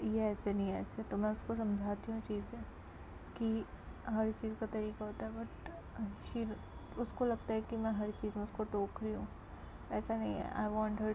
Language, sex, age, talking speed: Hindi, female, 20-39, 200 wpm